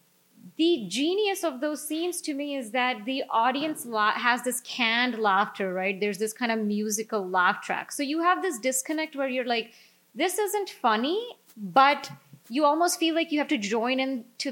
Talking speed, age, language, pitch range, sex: 185 wpm, 30-49, English, 210-295 Hz, female